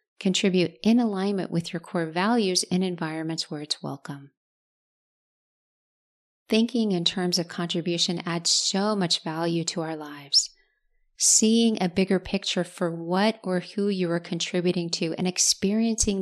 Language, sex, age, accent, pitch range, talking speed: English, female, 30-49, American, 165-200 Hz, 140 wpm